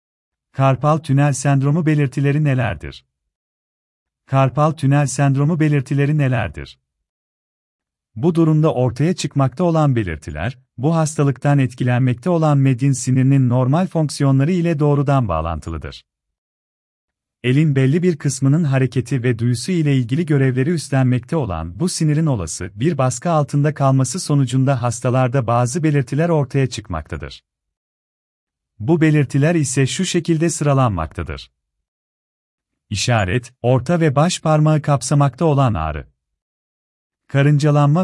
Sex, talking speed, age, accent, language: male, 105 wpm, 40-59, native, Turkish